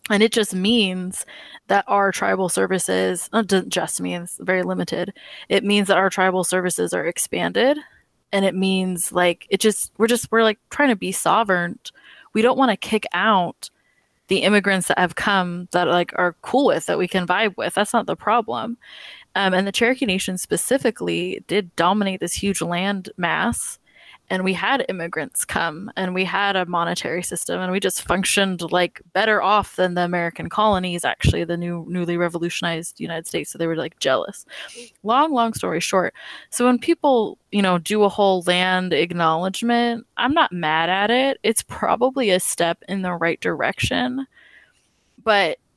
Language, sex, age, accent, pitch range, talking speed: English, female, 20-39, American, 175-220 Hz, 180 wpm